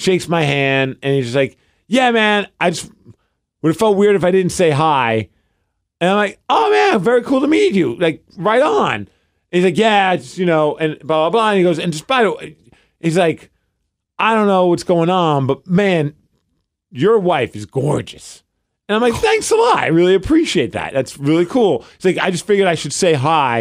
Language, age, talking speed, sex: English, 40-59, 225 wpm, male